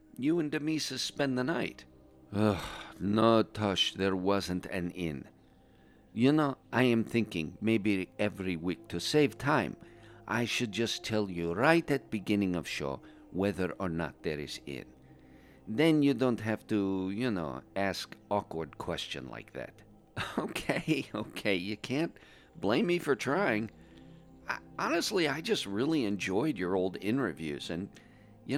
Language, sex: English, male